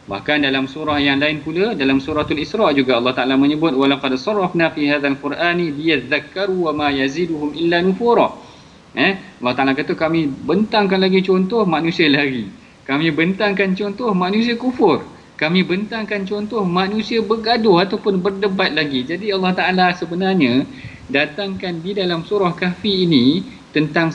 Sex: male